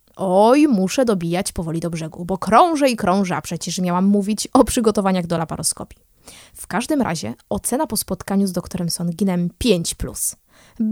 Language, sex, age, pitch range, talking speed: Polish, female, 20-39, 175-230 Hz, 155 wpm